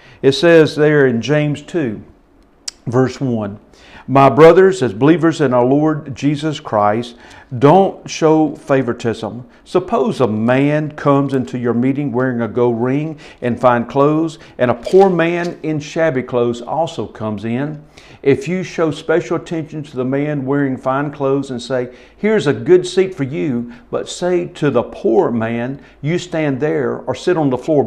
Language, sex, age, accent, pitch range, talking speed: English, male, 50-69, American, 125-165 Hz, 165 wpm